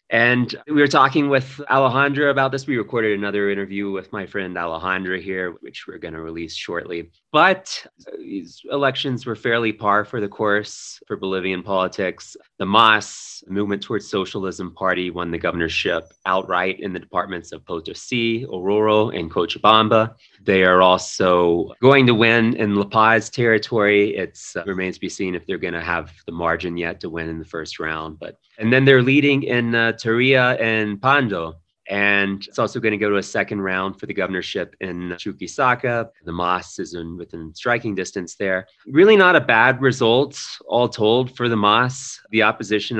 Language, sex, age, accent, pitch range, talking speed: English, male, 30-49, American, 85-120 Hz, 180 wpm